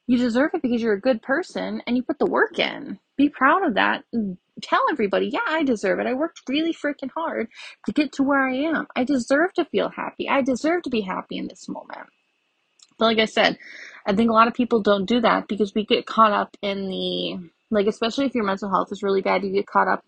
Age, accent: 20-39, American